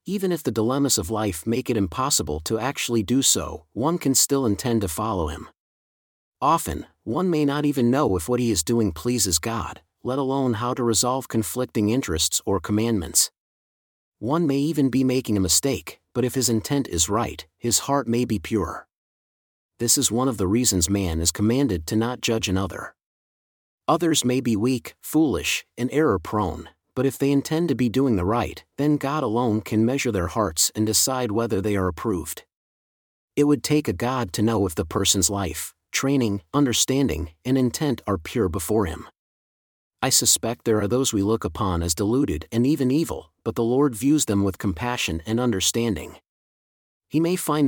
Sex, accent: male, American